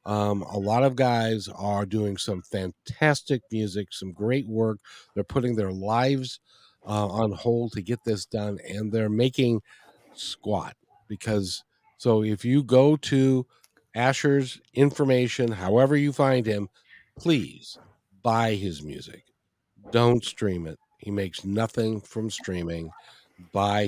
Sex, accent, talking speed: male, American, 135 wpm